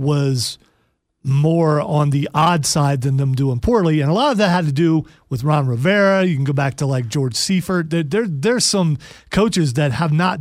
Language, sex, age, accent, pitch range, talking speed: English, male, 40-59, American, 140-180 Hz, 215 wpm